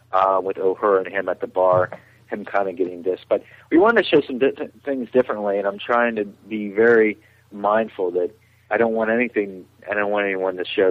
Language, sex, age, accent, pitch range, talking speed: English, male, 40-59, American, 100-120 Hz, 225 wpm